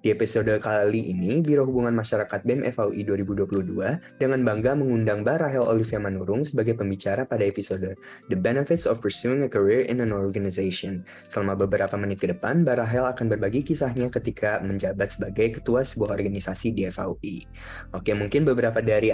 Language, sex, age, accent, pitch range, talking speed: Indonesian, male, 20-39, native, 100-125 Hz, 155 wpm